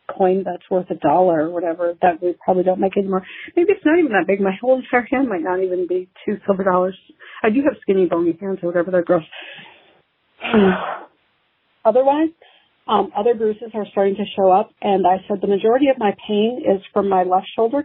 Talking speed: 210 wpm